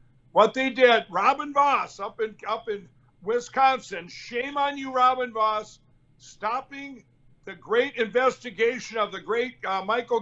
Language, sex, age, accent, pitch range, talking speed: English, male, 60-79, American, 190-240 Hz, 140 wpm